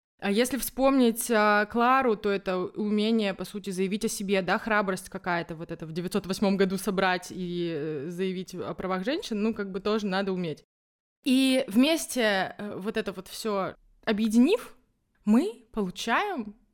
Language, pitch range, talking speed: Russian, 195-245 Hz, 145 wpm